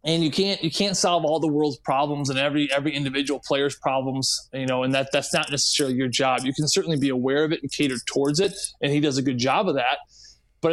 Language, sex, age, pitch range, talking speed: English, male, 20-39, 140-165 Hz, 250 wpm